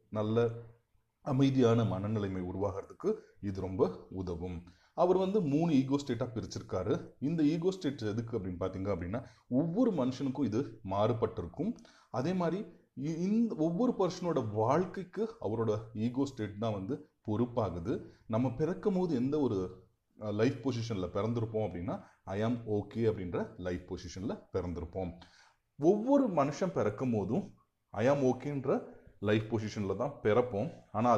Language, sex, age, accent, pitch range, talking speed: Tamil, male, 30-49, native, 95-135 Hz, 120 wpm